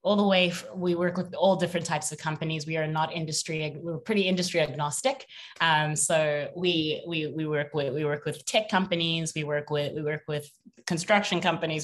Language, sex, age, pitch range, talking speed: English, female, 20-39, 155-180 Hz, 210 wpm